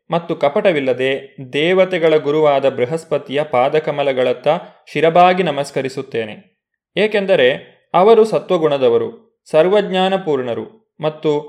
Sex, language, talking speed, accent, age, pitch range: male, Kannada, 70 wpm, native, 20-39, 145-180 Hz